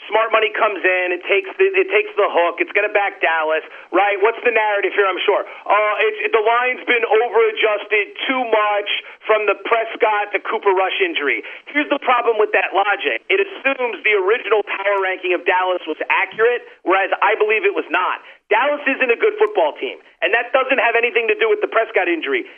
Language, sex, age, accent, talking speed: English, male, 40-59, American, 195 wpm